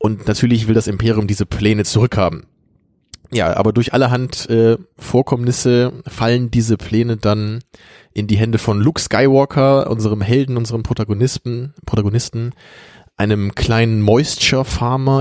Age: 20-39